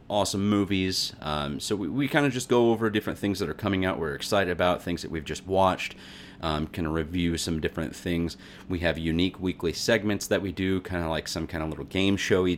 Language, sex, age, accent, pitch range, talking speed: English, male, 30-49, American, 80-95 Hz, 235 wpm